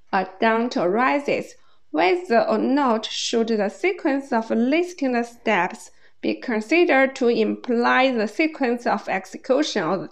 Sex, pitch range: female, 210-275 Hz